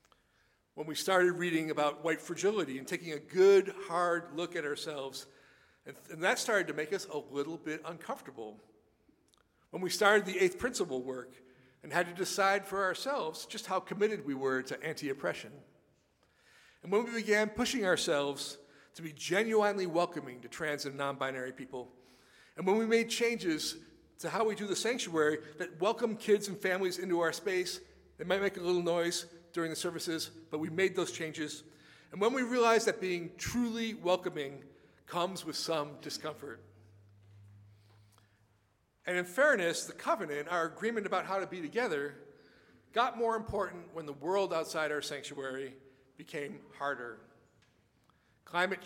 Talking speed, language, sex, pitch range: 160 wpm, English, male, 140-190 Hz